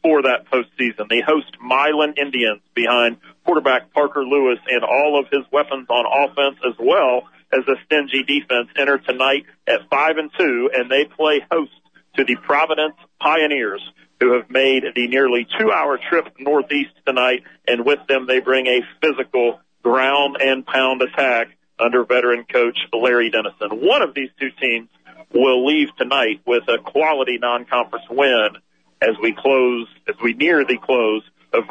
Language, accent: English, American